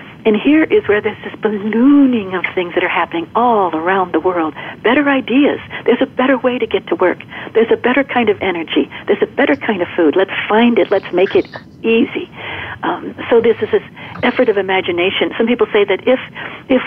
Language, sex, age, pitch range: English, female, 60-79, 170-245 Hz